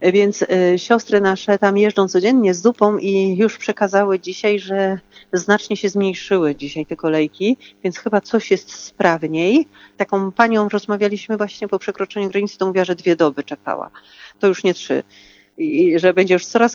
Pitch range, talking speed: 165-200 Hz, 170 wpm